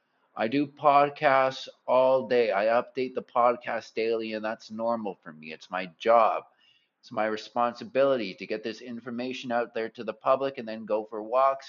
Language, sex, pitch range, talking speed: English, male, 125-165 Hz, 180 wpm